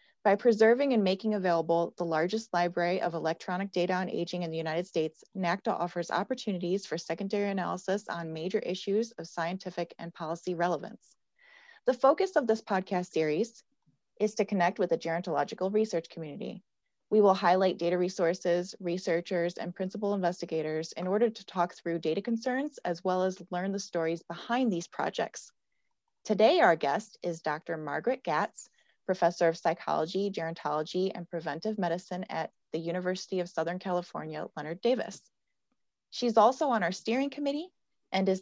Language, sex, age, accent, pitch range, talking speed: English, female, 30-49, American, 170-220 Hz, 155 wpm